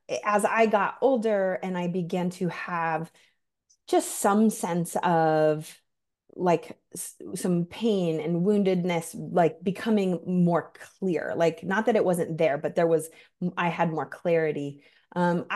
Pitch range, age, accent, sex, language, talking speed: 165-195 Hz, 30-49, American, female, English, 140 wpm